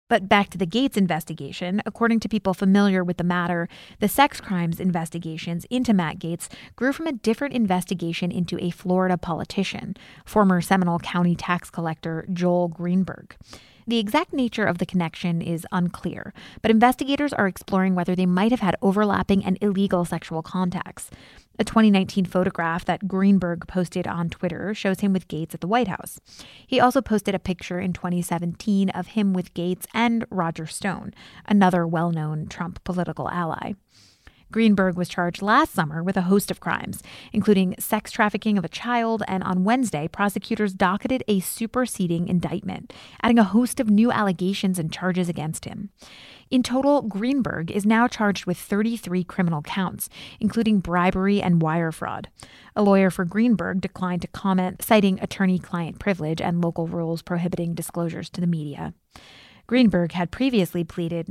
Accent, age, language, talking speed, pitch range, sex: American, 20-39, English, 160 wpm, 175-210 Hz, female